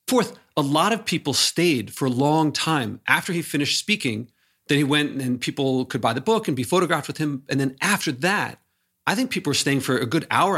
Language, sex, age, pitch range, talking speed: English, male, 40-59, 125-165 Hz, 235 wpm